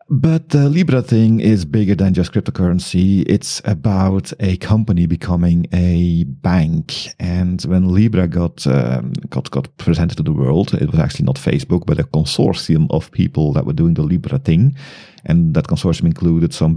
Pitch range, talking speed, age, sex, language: 80-105 Hz, 170 wpm, 40-59, male, English